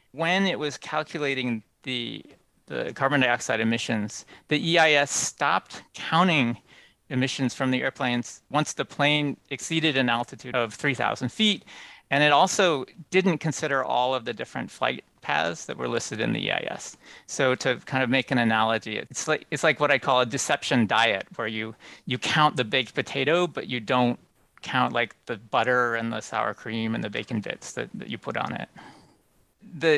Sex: male